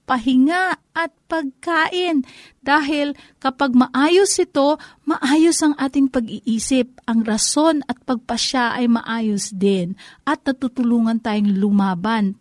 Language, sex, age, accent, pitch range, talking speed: Filipino, female, 40-59, native, 215-290 Hz, 105 wpm